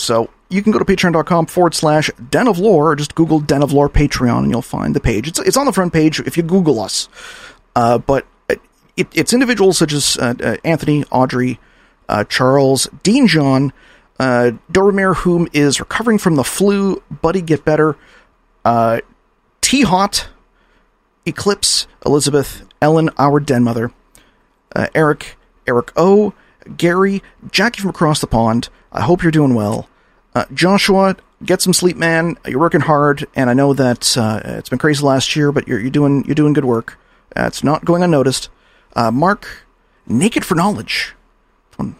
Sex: male